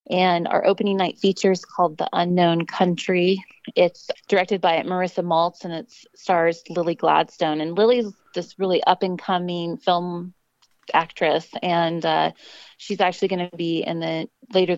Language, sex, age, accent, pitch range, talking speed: English, female, 20-39, American, 160-180 Hz, 160 wpm